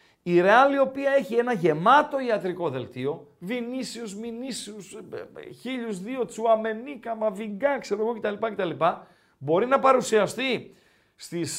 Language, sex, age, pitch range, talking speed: Greek, male, 40-59, 185-255 Hz, 120 wpm